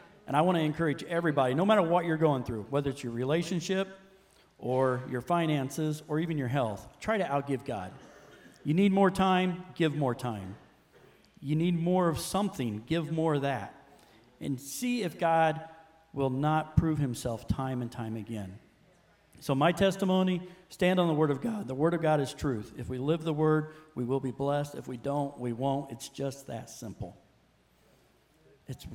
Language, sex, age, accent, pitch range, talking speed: English, male, 40-59, American, 120-160 Hz, 185 wpm